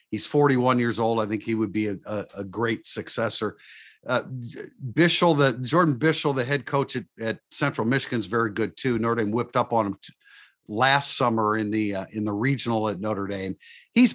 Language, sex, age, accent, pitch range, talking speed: English, male, 50-69, American, 105-130 Hz, 205 wpm